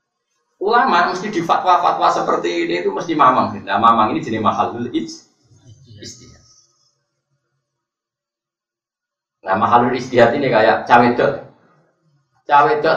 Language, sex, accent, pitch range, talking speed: Indonesian, male, native, 115-160 Hz, 100 wpm